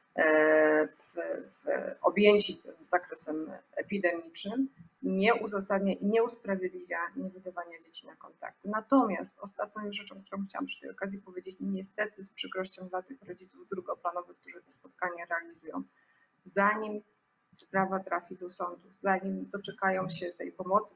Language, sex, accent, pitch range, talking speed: Polish, female, native, 180-210 Hz, 130 wpm